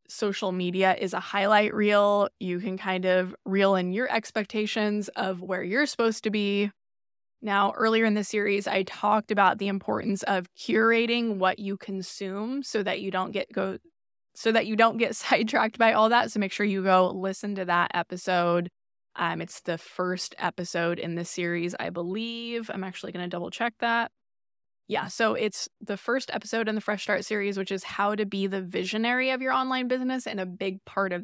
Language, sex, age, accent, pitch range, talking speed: English, female, 20-39, American, 180-215 Hz, 200 wpm